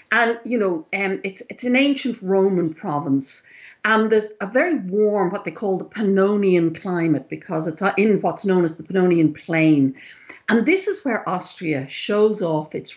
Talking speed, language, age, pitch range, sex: 175 wpm, English, 60-79, 170-235 Hz, female